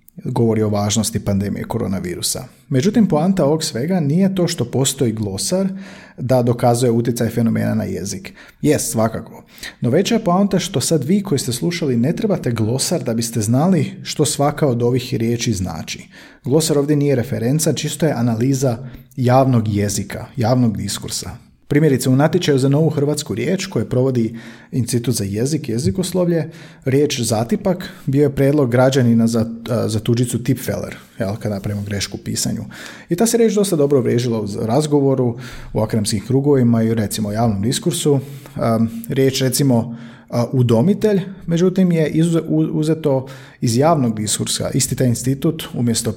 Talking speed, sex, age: 145 wpm, male, 40-59